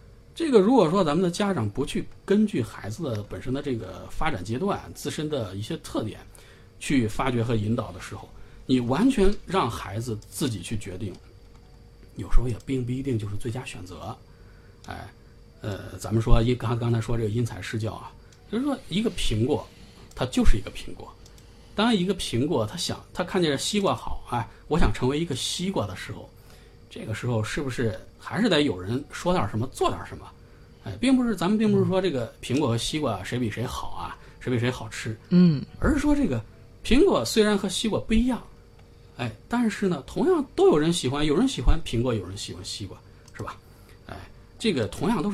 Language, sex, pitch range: Chinese, male, 110-180 Hz